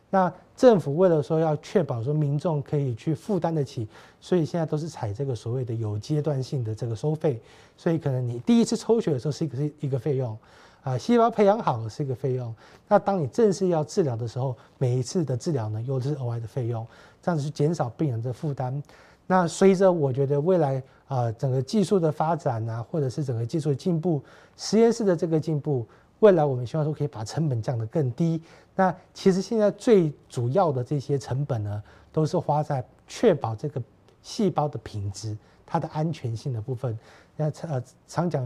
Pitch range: 125-165 Hz